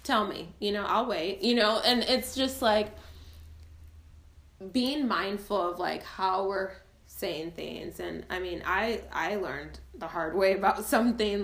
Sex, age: female, 20-39